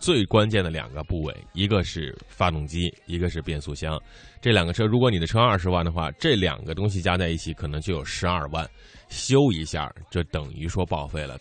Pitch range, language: 80-130 Hz, Chinese